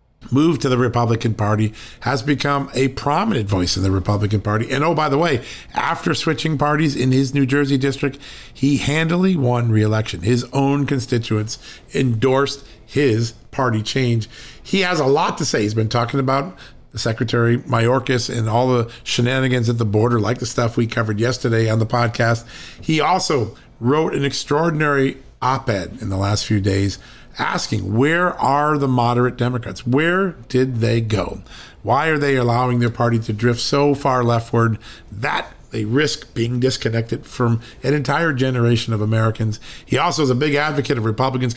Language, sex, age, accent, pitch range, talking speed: English, male, 50-69, American, 115-140 Hz, 170 wpm